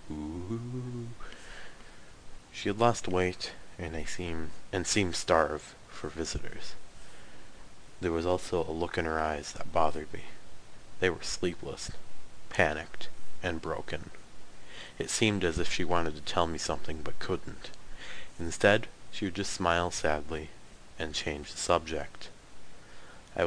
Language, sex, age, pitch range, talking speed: English, male, 30-49, 75-85 Hz, 135 wpm